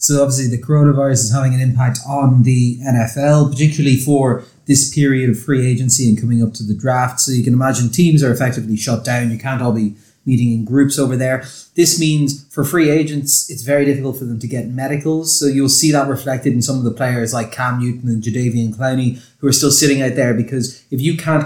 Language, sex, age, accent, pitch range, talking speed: English, male, 30-49, Irish, 120-140 Hz, 225 wpm